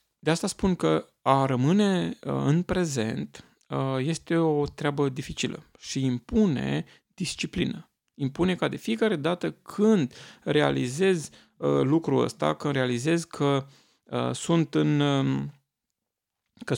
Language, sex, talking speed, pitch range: Romanian, male, 95 wpm, 120-145 Hz